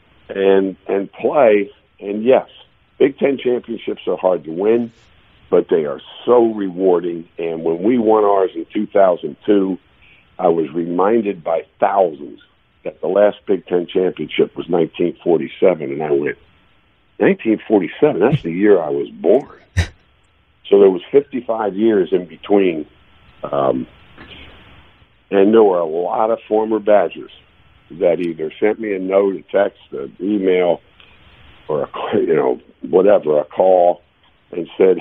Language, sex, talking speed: English, male, 140 wpm